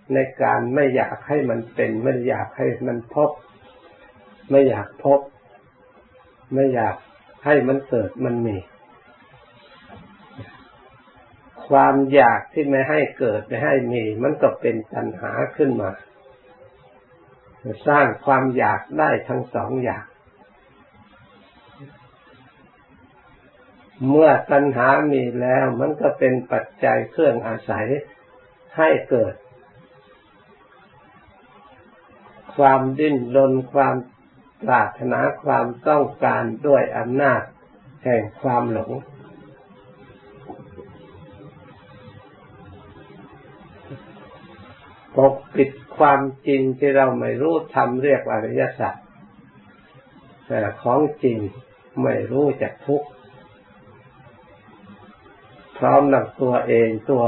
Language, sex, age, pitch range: Thai, male, 60-79, 115-140 Hz